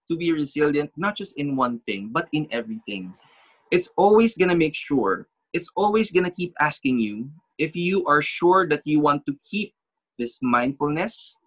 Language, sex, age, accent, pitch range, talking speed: English, male, 20-39, Filipino, 140-185 Hz, 185 wpm